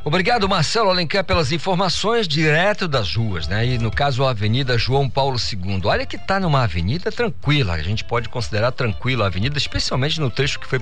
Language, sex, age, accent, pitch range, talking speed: Portuguese, male, 50-69, Brazilian, 100-155 Hz, 195 wpm